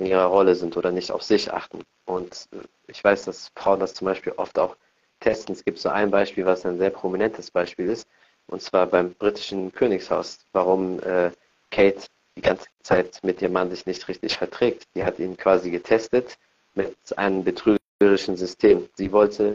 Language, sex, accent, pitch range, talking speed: German, male, German, 90-105 Hz, 185 wpm